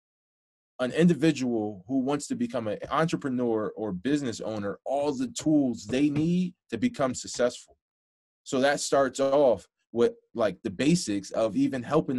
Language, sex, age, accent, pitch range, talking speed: English, male, 20-39, American, 105-135 Hz, 150 wpm